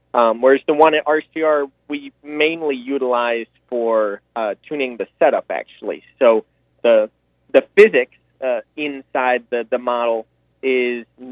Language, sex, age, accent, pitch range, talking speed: English, male, 30-49, American, 110-130 Hz, 135 wpm